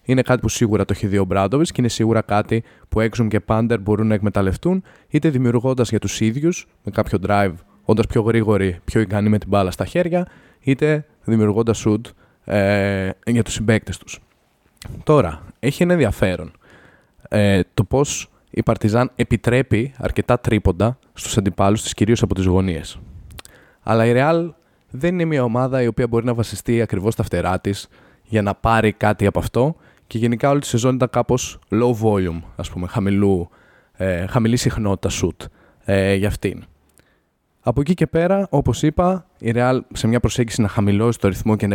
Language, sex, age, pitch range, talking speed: Greek, male, 20-39, 100-125 Hz, 175 wpm